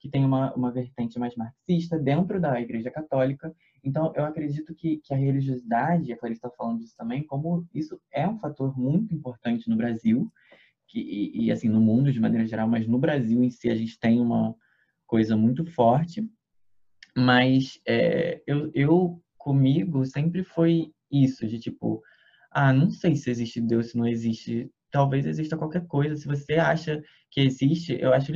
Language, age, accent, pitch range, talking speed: Portuguese, 20-39, Brazilian, 120-155 Hz, 175 wpm